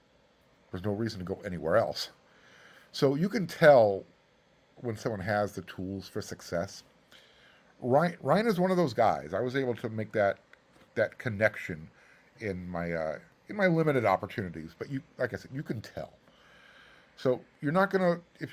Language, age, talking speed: English, 50-69, 170 wpm